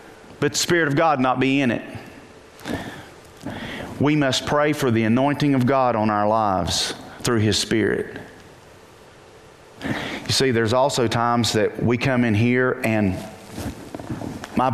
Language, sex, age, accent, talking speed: English, male, 40-59, American, 145 wpm